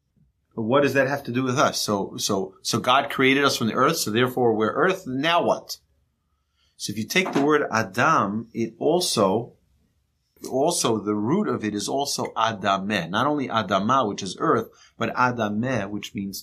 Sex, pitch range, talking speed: male, 100-135 Hz, 185 wpm